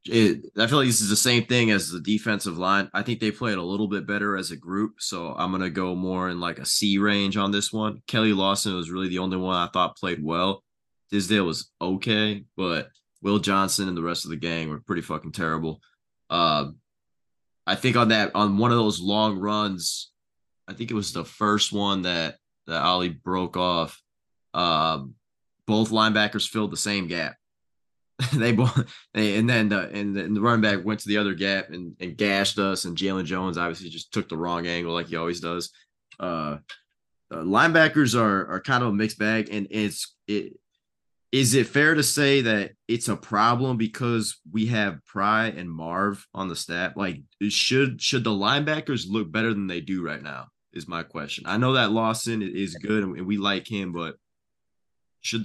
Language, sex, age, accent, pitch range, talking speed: English, male, 20-39, American, 90-110 Hz, 200 wpm